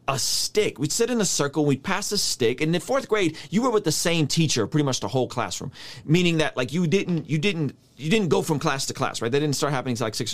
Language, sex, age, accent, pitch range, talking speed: English, male, 30-49, American, 140-195 Hz, 285 wpm